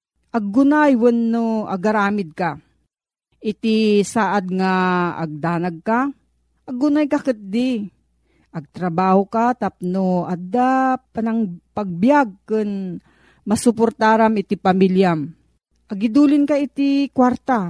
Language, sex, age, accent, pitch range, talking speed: Filipino, female, 40-59, native, 180-240 Hz, 90 wpm